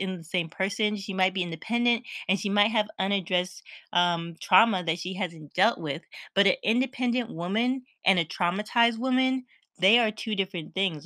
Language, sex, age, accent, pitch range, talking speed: English, female, 20-39, American, 165-195 Hz, 180 wpm